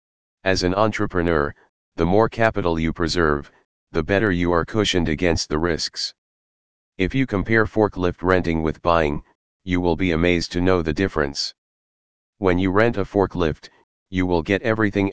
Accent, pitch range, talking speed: American, 80-95 Hz, 160 wpm